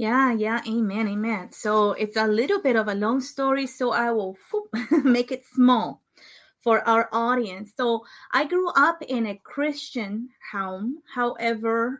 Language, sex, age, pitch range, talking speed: English, female, 30-49, 210-245 Hz, 155 wpm